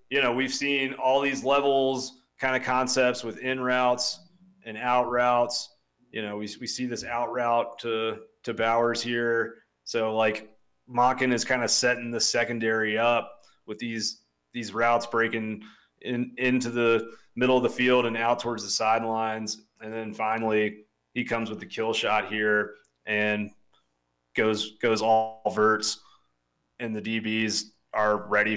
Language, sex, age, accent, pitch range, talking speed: English, male, 30-49, American, 105-120 Hz, 160 wpm